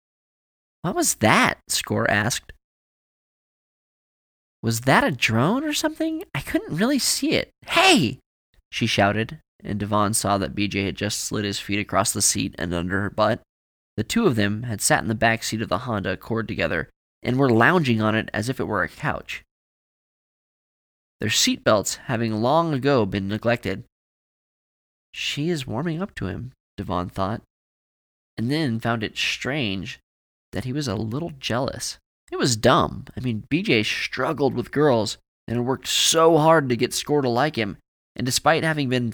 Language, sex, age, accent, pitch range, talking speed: English, male, 20-39, American, 100-145 Hz, 175 wpm